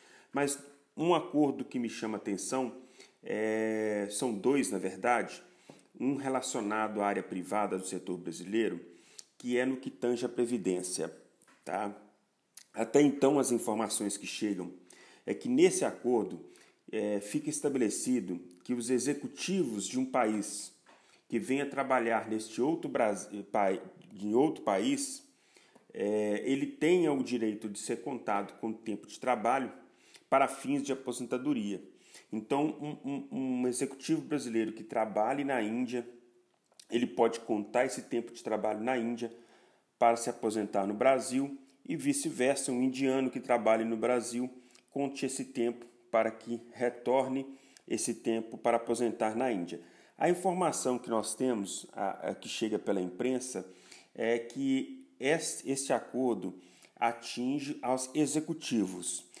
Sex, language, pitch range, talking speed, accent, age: male, Portuguese, 110-135 Hz, 125 wpm, Brazilian, 40-59